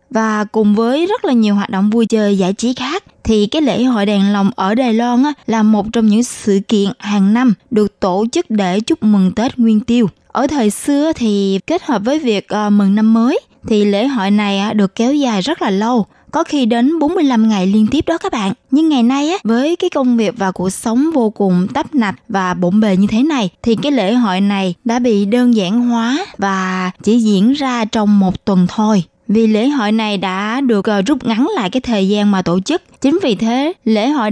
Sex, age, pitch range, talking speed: female, 20-39, 200-260 Hz, 225 wpm